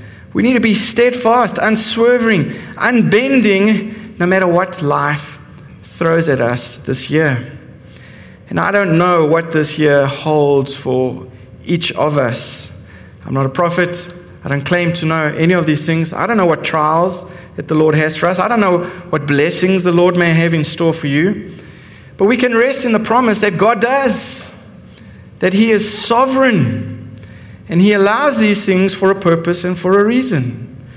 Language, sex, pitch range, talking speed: English, male, 145-205 Hz, 175 wpm